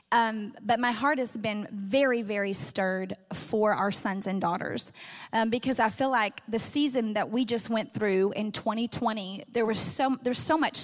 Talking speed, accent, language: 190 wpm, American, English